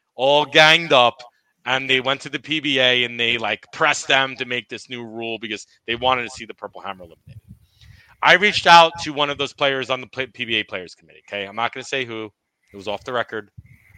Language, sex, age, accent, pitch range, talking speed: English, male, 30-49, American, 110-135 Hz, 230 wpm